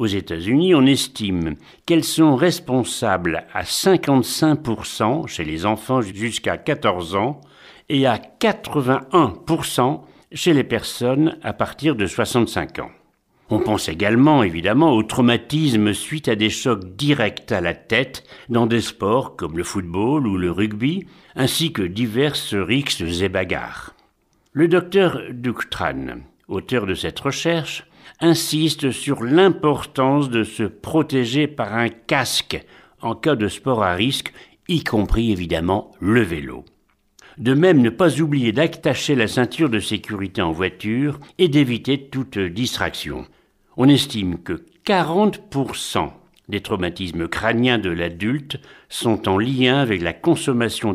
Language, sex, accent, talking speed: French, male, French, 135 wpm